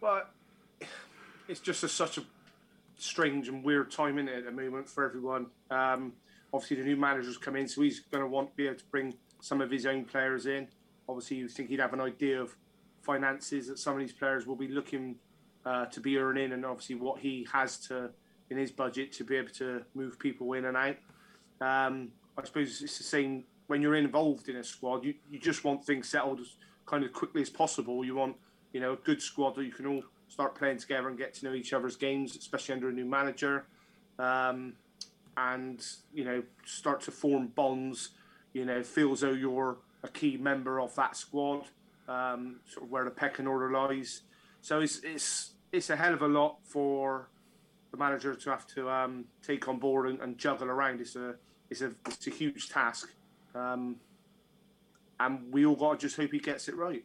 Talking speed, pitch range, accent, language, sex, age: 205 wpm, 130-145 Hz, British, English, male, 20-39